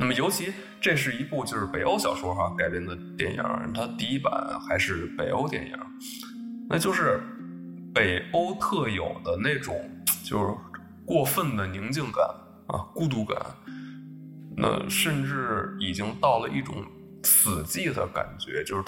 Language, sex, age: Chinese, male, 20-39